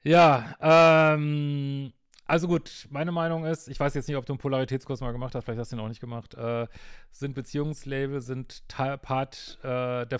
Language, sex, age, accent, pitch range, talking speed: German, male, 40-59, German, 115-140 Hz, 195 wpm